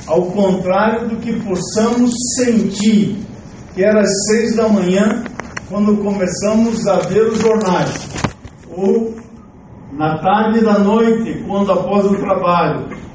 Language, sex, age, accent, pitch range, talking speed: Portuguese, male, 50-69, Brazilian, 185-225 Hz, 125 wpm